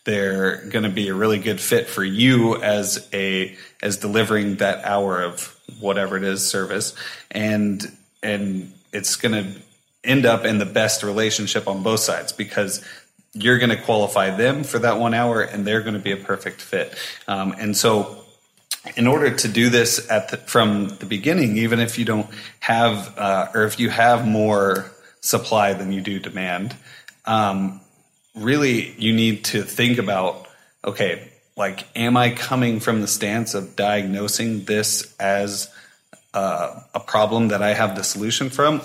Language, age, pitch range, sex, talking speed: English, 30-49, 100-115 Hz, male, 170 wpm